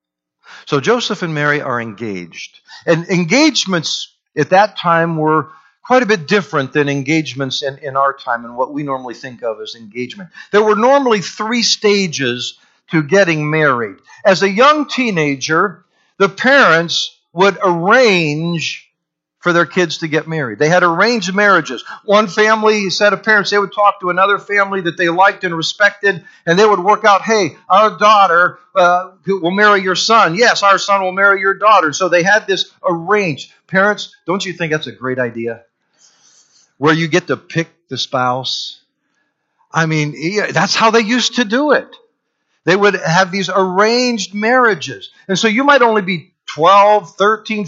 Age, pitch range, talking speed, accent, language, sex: 50-69, 160-220 Hz, 170 wpm, American, English, male